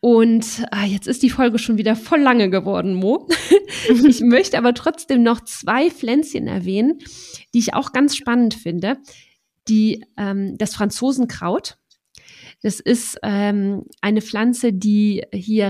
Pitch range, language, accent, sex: 200-250 Hz, German, German, female